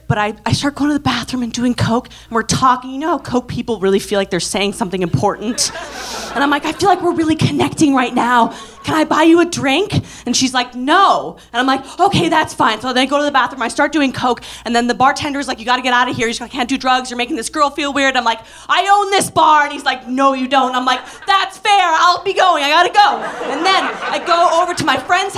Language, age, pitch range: English, 30-49, 265-365 Hz